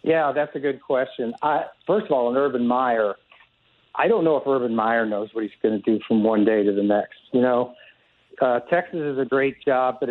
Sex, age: male, 60-79